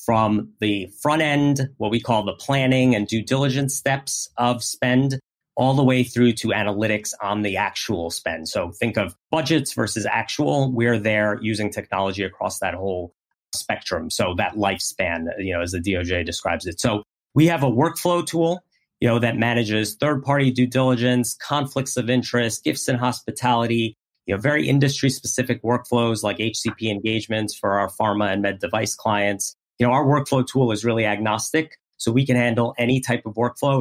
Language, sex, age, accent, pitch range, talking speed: English, male, 30-49, American, 105-130 Hz, 170 wpm